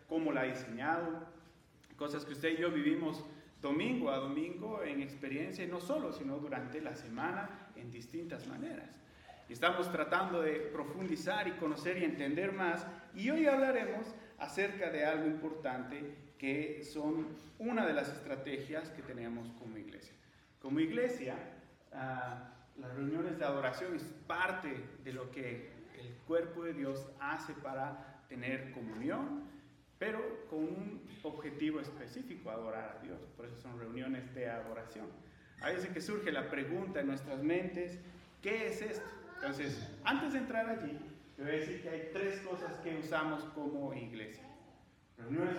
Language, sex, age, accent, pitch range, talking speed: English, male, 40-59, Mexican, 135-175 Hz, 150 wpm